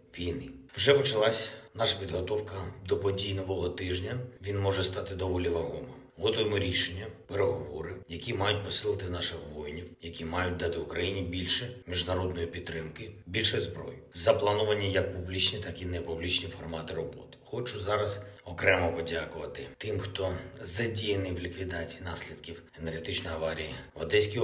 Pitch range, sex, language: 85-100 Hz, male, Ukrainian